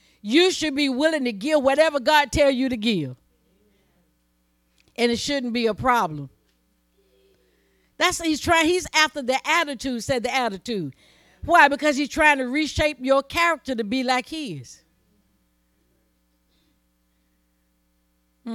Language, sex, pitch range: English, female, 190-290 Hz